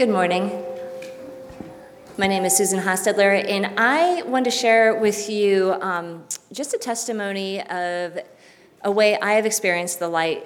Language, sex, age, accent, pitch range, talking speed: English, female, 30-49, American, 170-215 Hz, 150 wpm